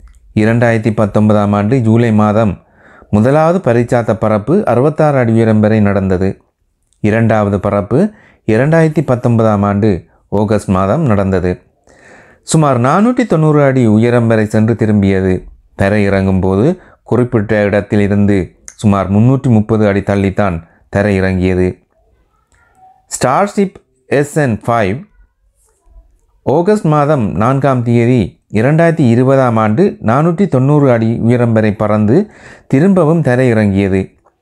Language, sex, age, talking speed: Tamil, male, 30-49, 100 wpm